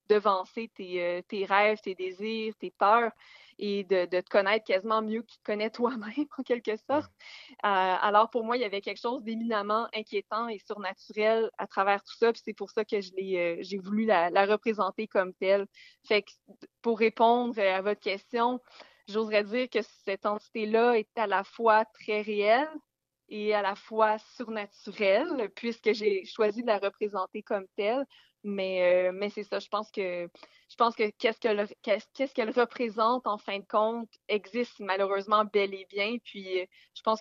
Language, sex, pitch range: French, female, 195-225 Hz